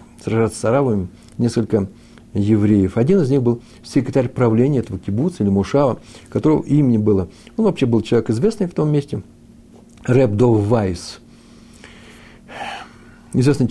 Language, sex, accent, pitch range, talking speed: Russian, male, native, 110-140 Hz, 125 wpm